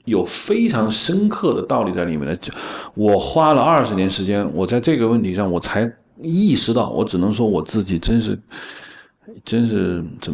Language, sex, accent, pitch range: Chinese, male, native, 105-155 Hz